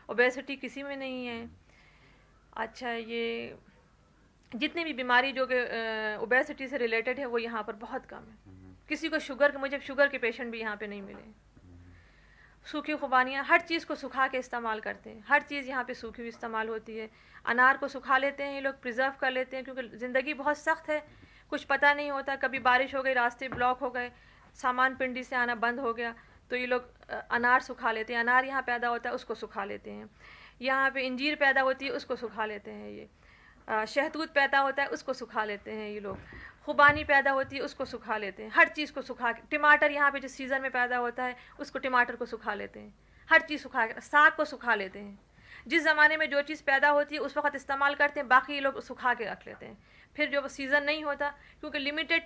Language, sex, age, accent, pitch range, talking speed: Hindi, female, 40-59, native, 235-285 Hz, 220 wpm